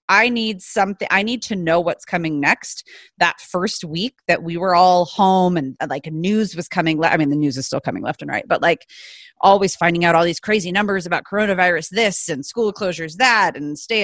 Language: English